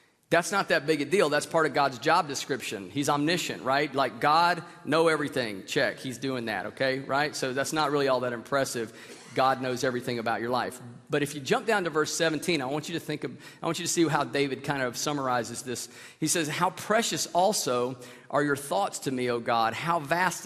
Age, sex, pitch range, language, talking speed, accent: 40-59, male, 135-175 Hz, English, 225 wpm, American